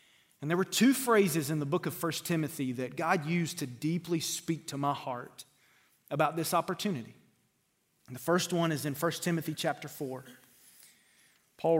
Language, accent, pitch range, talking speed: English, American, 140-185 Hz, 175 wpm